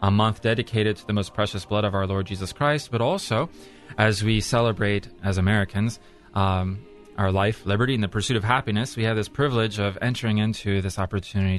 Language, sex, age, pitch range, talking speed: English, male, 30-49, 100-115 Hz, 195 wpm